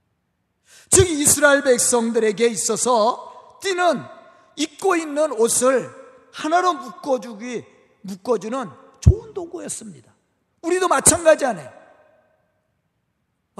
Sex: male